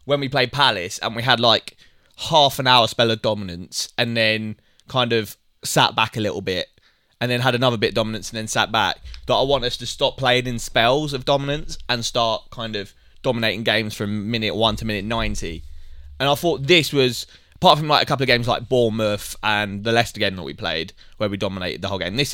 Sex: male